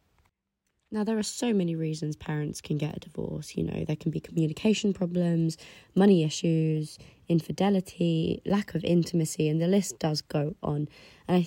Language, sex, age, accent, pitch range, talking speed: English, female, 20-39, British, 155-185 Hz, 165 wpm